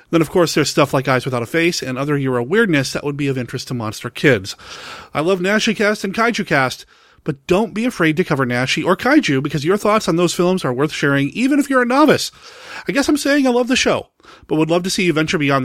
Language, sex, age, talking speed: English, male, 30-49, 260 wpm